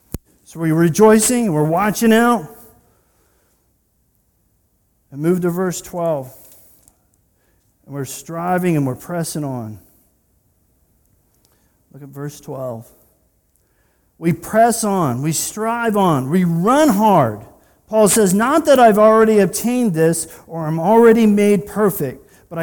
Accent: American